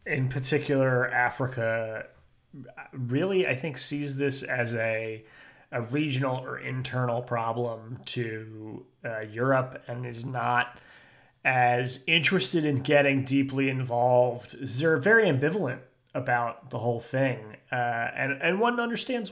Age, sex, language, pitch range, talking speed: 30-49, male, English, 120-140 Hz, 120 wpm